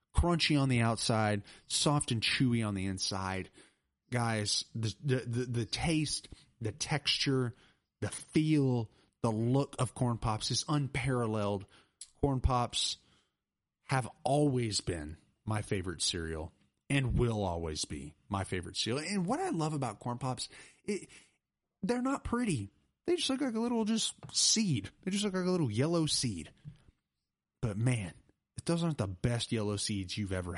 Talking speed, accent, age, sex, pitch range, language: 155 wpm, American, 30-49, male, 95-140 Hz, English